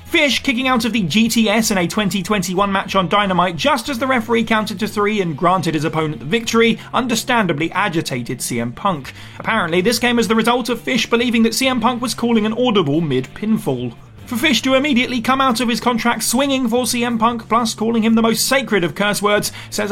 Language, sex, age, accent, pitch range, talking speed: English, male, 30-49, British, 175-235 Hz, 210 wpm